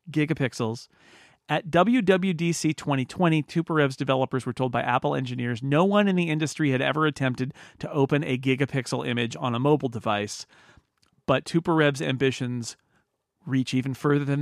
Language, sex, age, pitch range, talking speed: English, male, 40-59, 130-155 Hz, 150 wpm